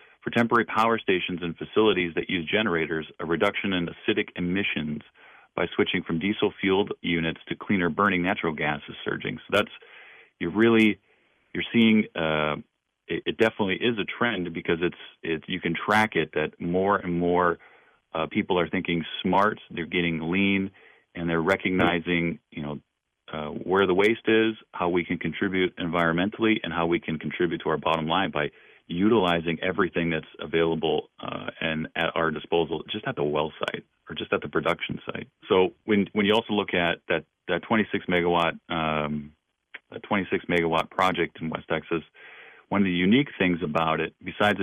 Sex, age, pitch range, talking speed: male, 40-59, 80-95 Hz, 175 wpm